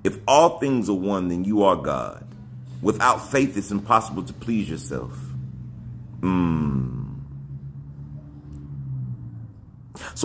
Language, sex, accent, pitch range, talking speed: English, male, American, 70-110 Hz, 105 wpm